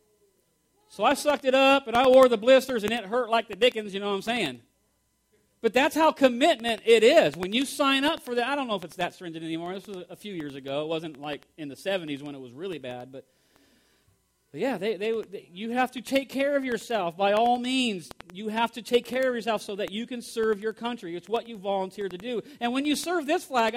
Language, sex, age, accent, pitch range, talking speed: English, male, 40-59, American, 210-290 Hz, 245 wpm